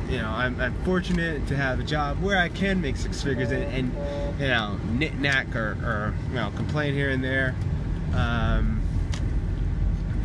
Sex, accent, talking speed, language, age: male, American, 175 wpm, English, 20-39